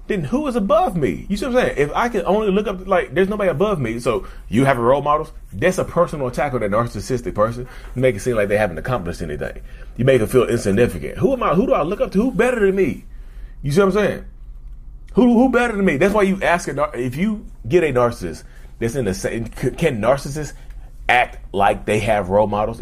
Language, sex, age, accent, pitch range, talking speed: English, male, 30-49, American, 105-155 Hz, 245 wpm